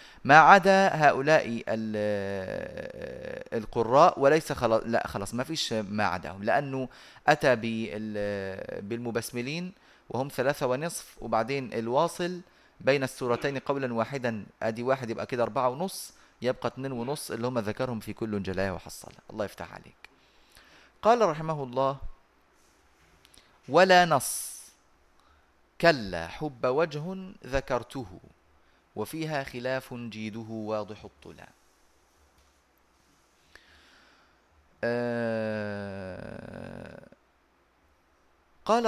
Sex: male